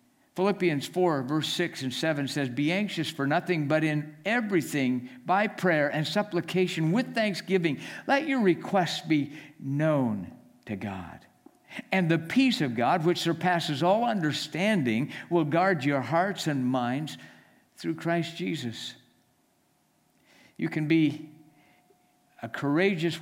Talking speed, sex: 130 wpm, male